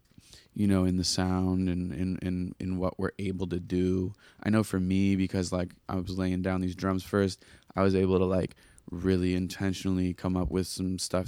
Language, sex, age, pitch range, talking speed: English, male, 20-39, 90-95 Hz, 195 wpm